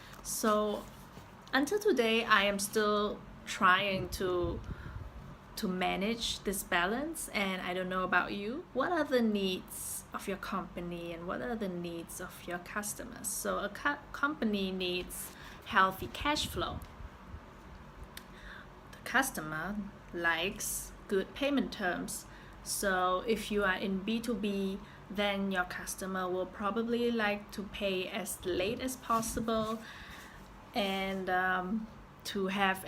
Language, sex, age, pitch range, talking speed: Vietnamese, female, 20-39, 180-220 Hz, 125 wpm